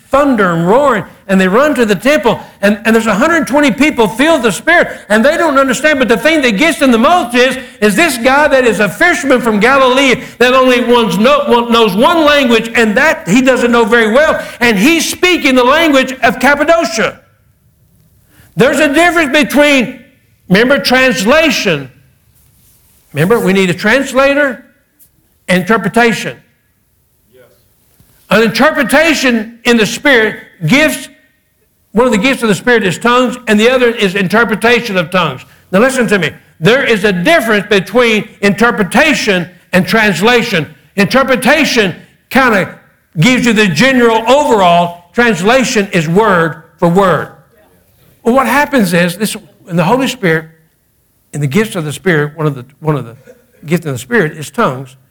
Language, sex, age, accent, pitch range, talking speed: English, male, 60-79, American, 195-265 Hz, 160 wpm